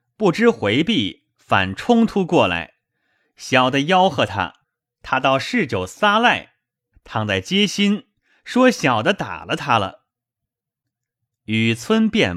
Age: 30-49